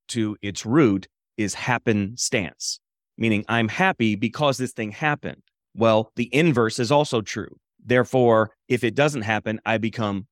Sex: male